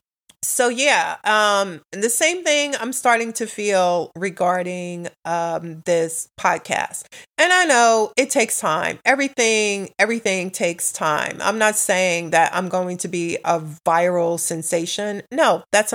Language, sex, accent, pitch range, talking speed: English, female, American, 170-210 Hz, 140 wpm